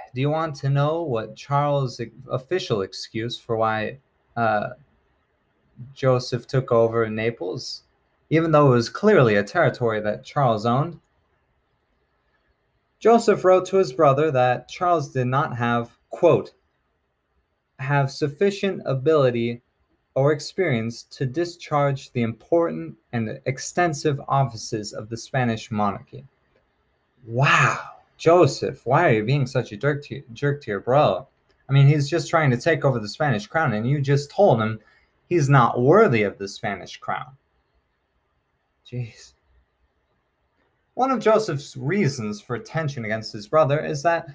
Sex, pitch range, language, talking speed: male, 110-150 Hz, English, 140 wpm